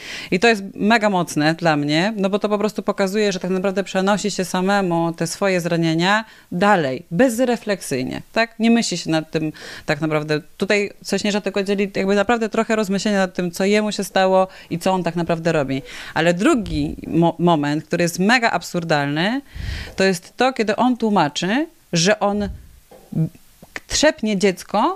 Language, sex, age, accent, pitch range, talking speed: Polish, female, 30-49, native, 170-225 Hz, 170 wpm